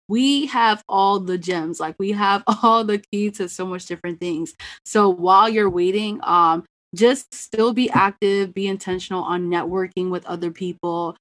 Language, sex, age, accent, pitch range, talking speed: English, female, 20-39, American, 175-205 Hz, 170 wpm